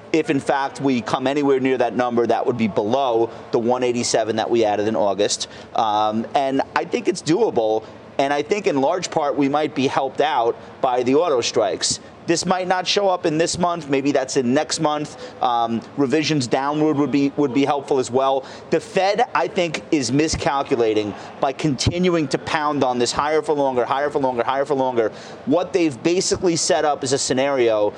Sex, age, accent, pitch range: male, 30-49, American, 125-155 Hz